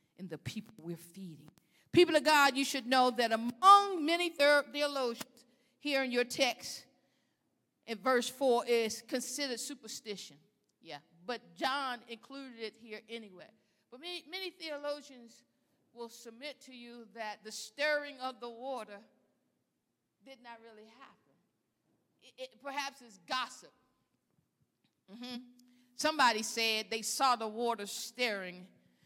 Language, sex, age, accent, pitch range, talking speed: English, female, 50-69, American, 230-275 Hz, 130 wpm